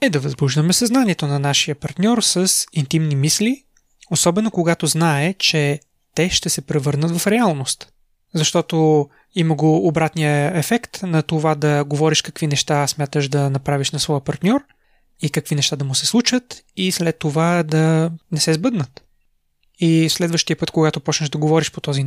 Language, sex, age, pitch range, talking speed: Bulgarian, male, 20-39, 150-175 Hz, 165 wpm